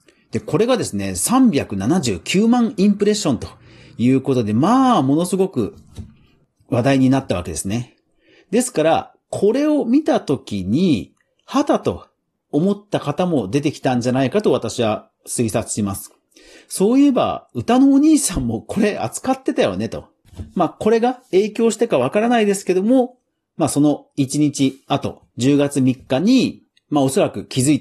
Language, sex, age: Japanese, male, 40-59